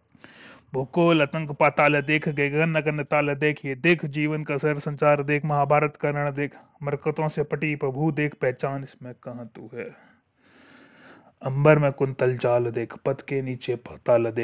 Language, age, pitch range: Hindi, 30-49, 120-135 Hz